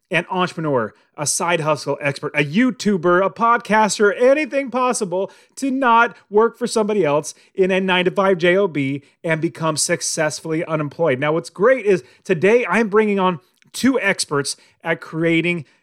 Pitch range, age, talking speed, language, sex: 160-220 Hz, 30-49, 145 wpm, English, male